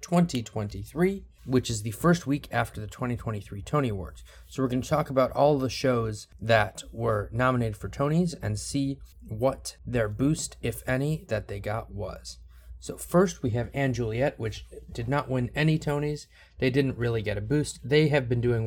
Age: 20-39